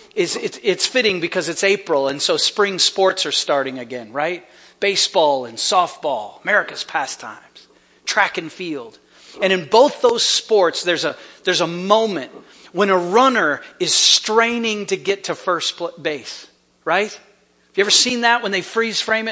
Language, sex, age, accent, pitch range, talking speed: English, male, 40-59, American, 165-225 Hz, 170 wpm